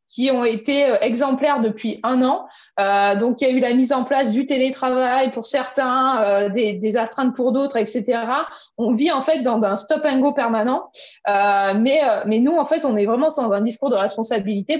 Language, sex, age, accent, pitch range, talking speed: French, female, 20-39, French, 210-275 Hz, 215 wpm